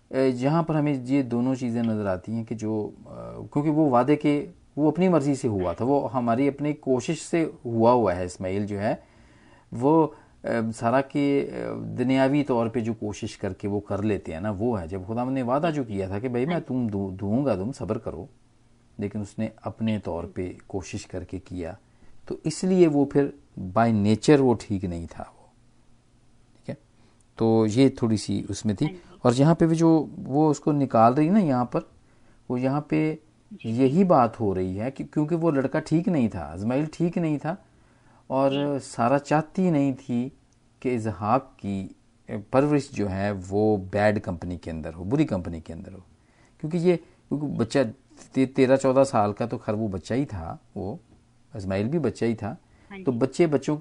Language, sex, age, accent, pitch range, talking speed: Hindi, male, 40-59, native, 105-140 Hz, 185 wpm